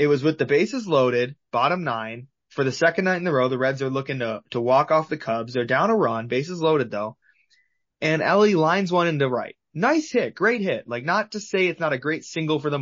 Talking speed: 255 wpm